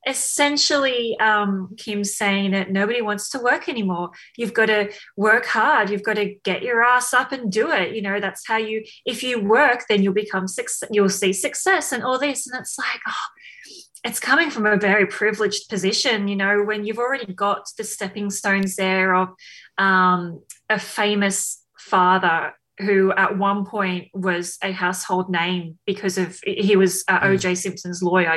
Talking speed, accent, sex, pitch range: 175 wpm, Australian, female, 185-220 Hz